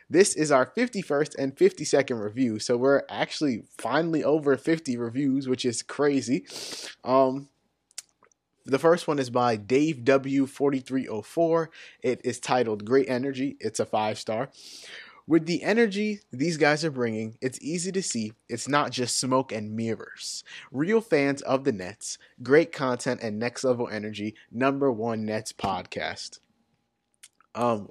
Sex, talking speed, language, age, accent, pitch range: male, 145 wpm, English, 20-39, American, 120-150 Hz